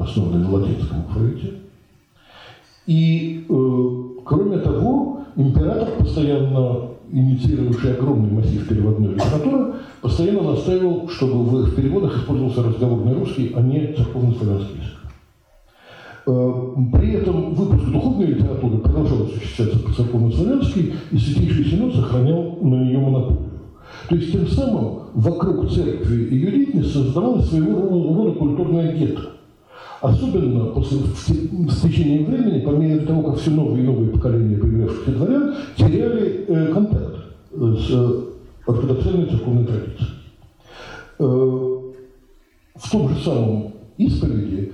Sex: male